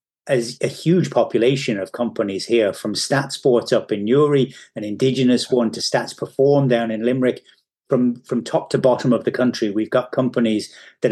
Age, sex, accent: 30-49, male, British